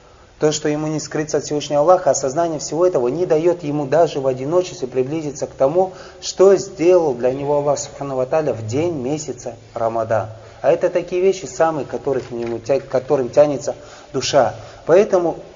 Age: 30-49